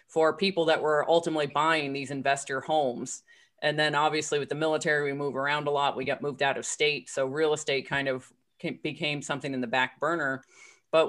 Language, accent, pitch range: English, American, 140-160 Hz